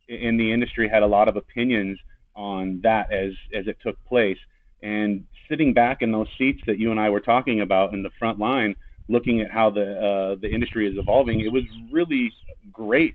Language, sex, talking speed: English, male, 205 wpm